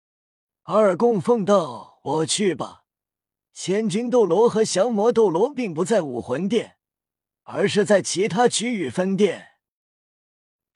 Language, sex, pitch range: Chinese, male, 165-220 Hz